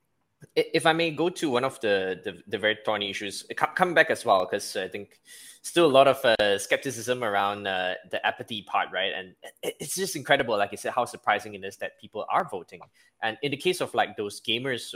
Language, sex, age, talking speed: English, male, 10-29, 220 wpm